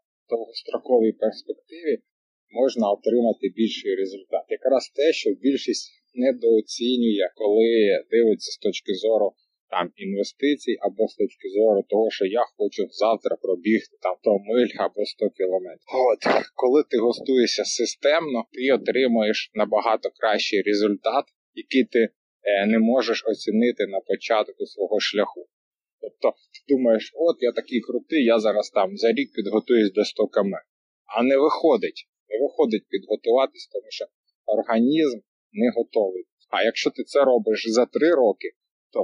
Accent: native